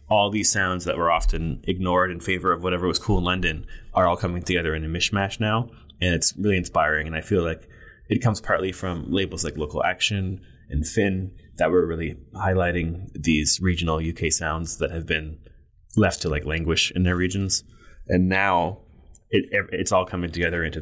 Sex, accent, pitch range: male, American, 80-95 Hz